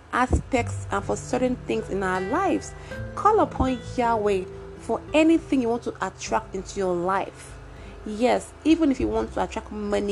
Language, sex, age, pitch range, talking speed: English, female, 30-49, 180-255 Hz, 165 wpm